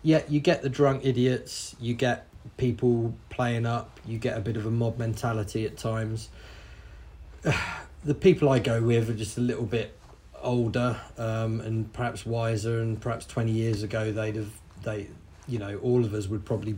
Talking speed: 180 wpm